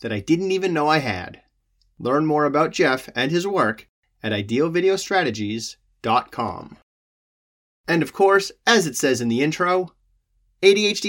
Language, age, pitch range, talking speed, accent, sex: English, 30-49, 130-195 Hz, 140 wpm, American, male